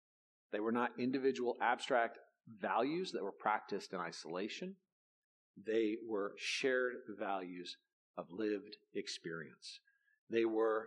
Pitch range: 110-150 Hz